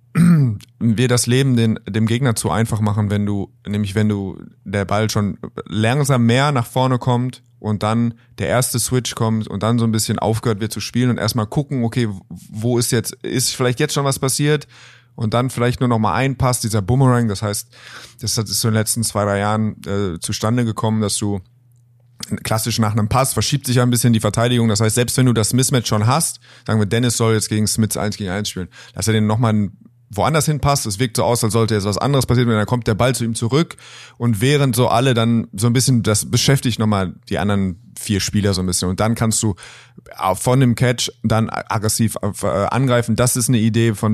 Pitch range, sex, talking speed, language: 105-125 Hz, male, 220 wpm, German